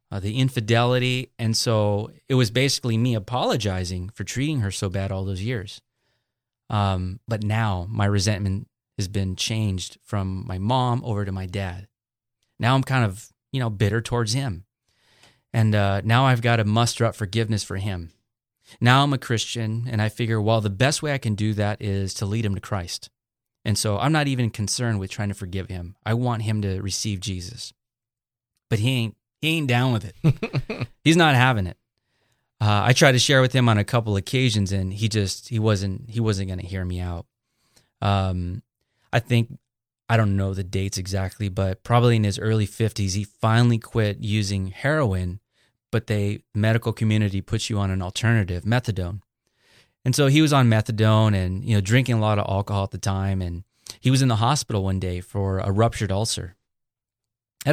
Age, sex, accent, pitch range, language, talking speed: 30-49, male, American, 100-120 Hz, English, 195 wpm